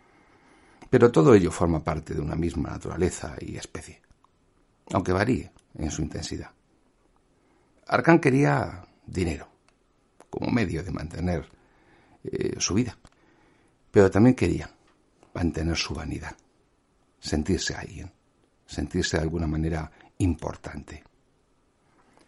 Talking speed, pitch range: 105 wpm, 80-100 Hz